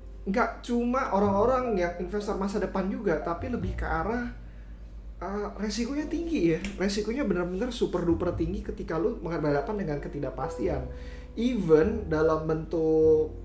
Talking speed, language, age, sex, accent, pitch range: 130 wpm, Indonesian, 20-39, male, native, 145-195 Hz